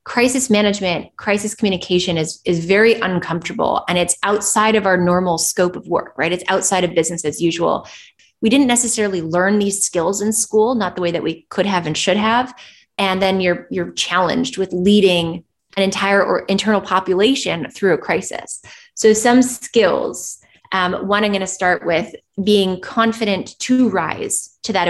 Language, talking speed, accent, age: English, 175 wpm, American, 20-39